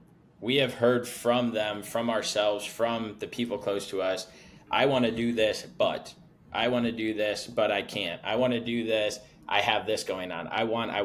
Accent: American